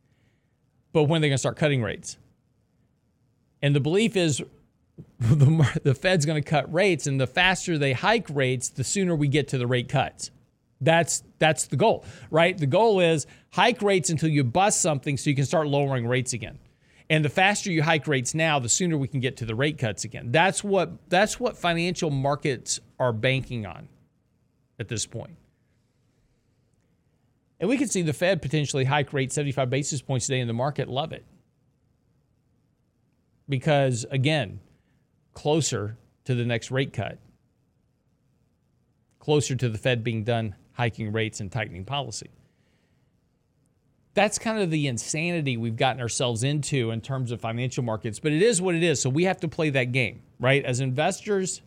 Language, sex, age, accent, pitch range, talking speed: English, male, 40-59, American, 125-155 Hz, 175 wpm